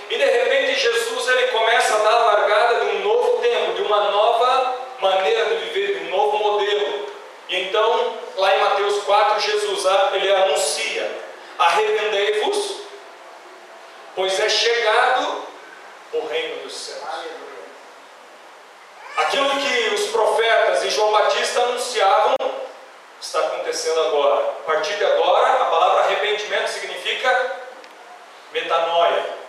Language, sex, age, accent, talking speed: Portuguese, male, 40-59, Brazilian, 120 wpm